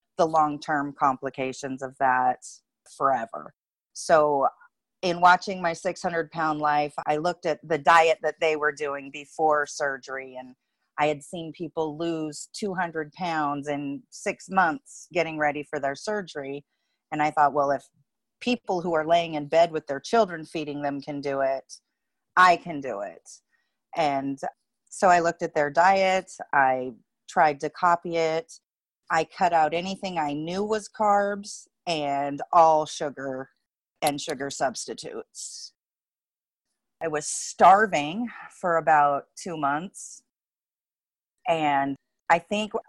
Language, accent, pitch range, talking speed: English, American, 145-175 Hz, 140 wpm